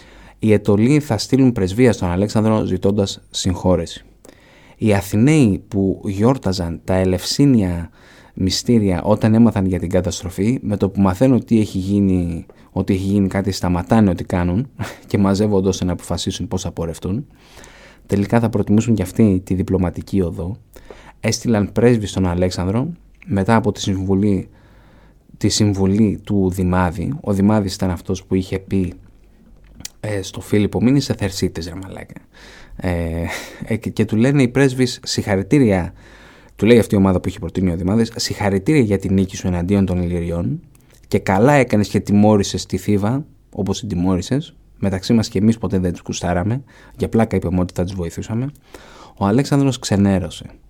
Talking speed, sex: 155 wpm, male